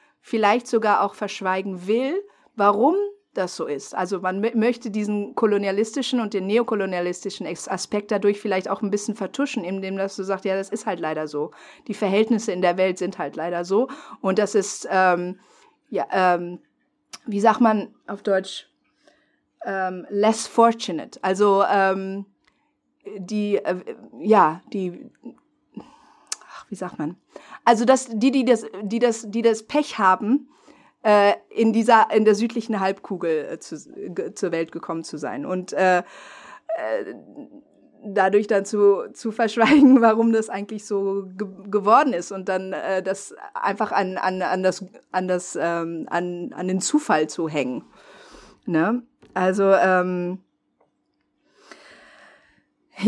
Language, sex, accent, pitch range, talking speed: German, female, German, 185-230 Hz, 145 wpm